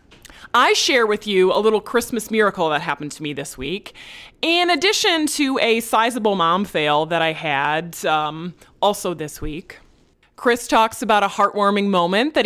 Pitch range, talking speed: 165-235 Hz, 170 wpm